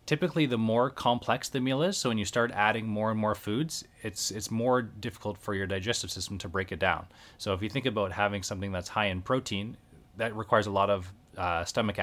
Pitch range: 95-115 Hz